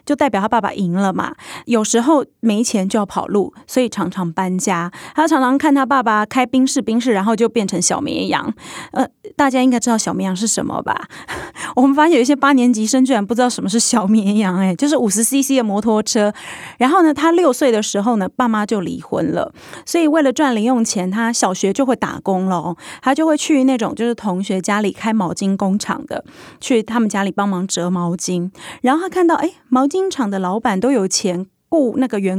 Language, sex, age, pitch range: Chinese, female, 30-49, 200-265 Hz